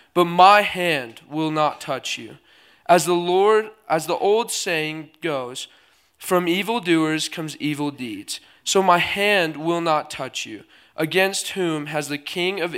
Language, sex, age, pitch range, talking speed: English, male, 20-39, 150-200 Hz, 155 wpm